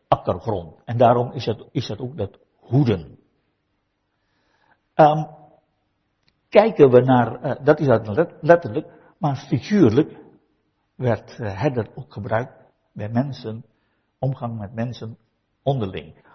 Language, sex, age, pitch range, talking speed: Finnish, male, 60-79, 110-140 Hz, 115 wpm